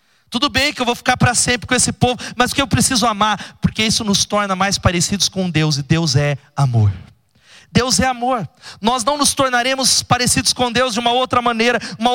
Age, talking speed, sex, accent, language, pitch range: 30-49, 210 wpm, male, Brazilian, Portuguese, 185-245 Hz